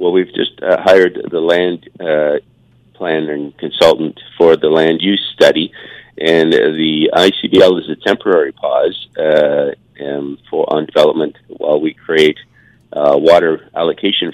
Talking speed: 135 wpm